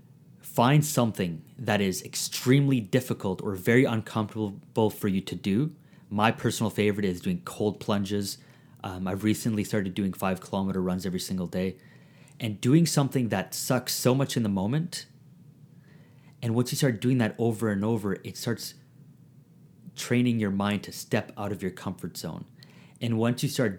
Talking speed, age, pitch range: 165 wpm, 30-49, 105-145 Hz